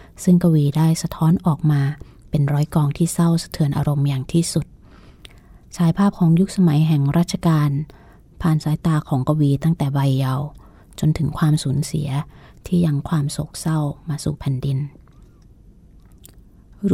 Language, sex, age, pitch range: Thai, female, 20-39, 145-165 Hz